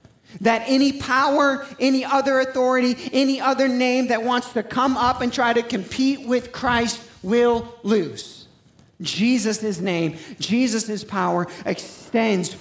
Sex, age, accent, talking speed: male, 40-59, American, 130 wpm